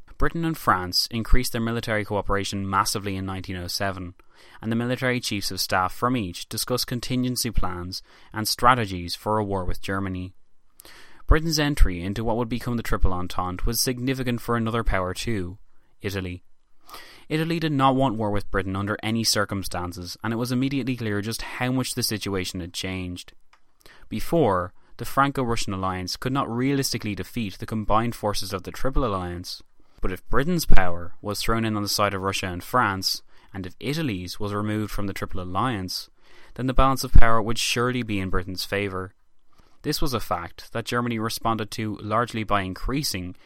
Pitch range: 95-120 Hz